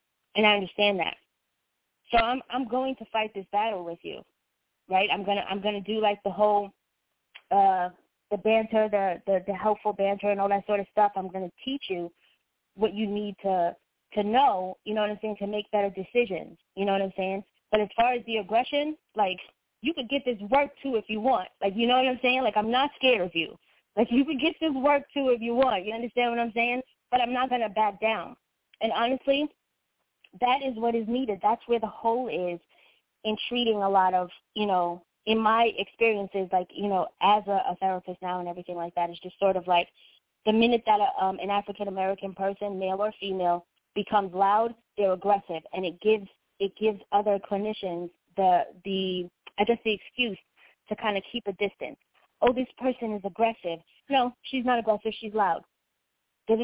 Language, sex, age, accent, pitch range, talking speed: English, female, 20-39, American, 195-235 Hz, 210 wpm